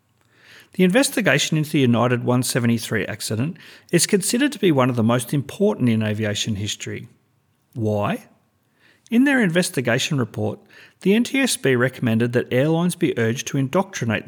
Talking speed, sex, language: 140 wpm, male, English